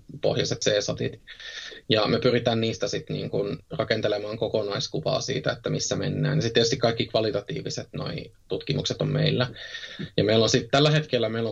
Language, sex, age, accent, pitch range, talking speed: Finnish, male, 20-39, native, 105-135 Hz, 150 wpm